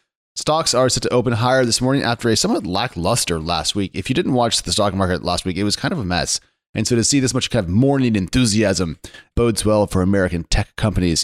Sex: male